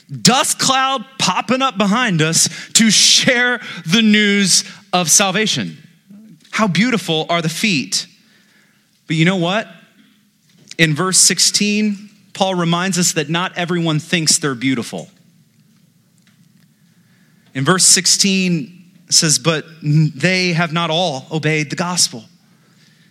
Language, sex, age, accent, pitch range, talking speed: English, male, 30-49, American, 170-205 Hz, 120 wpm